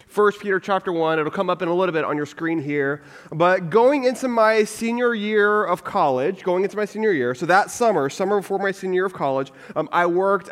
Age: 20-39